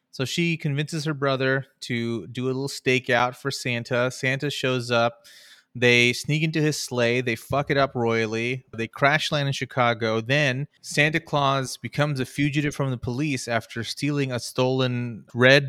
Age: 30-49